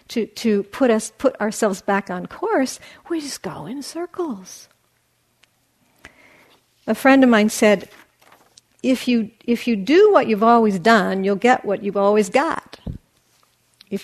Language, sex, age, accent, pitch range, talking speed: English, female, 50-69, American, 200-255 Hz, 150 wpm